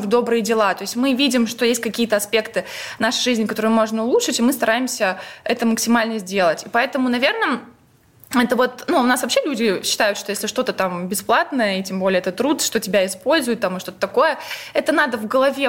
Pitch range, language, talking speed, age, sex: 220-280 Hz, Russian, 200 wpm, 20-39, female